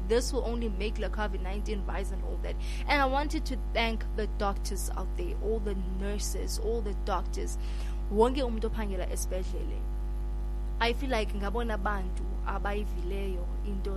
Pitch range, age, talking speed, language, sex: 200-230 Hz, 20-39, 120 wpm, English, female